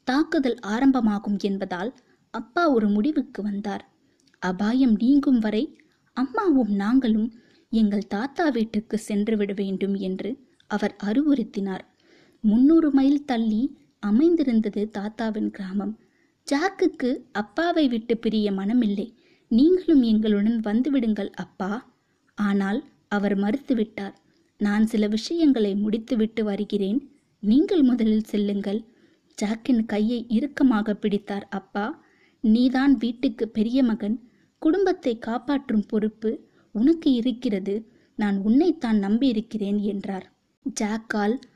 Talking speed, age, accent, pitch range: 95 wpm, 20-39, native, 210-270 Hz